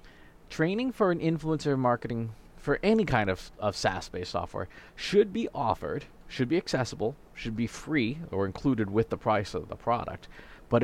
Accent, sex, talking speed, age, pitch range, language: American, male, 170 wpm, 30-49, 105-140 Hz, English